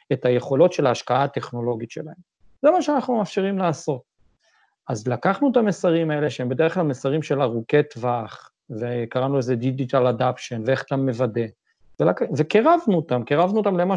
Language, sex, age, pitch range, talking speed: Hebrew, male, 40-59, 135-180 Hz, 155 wpm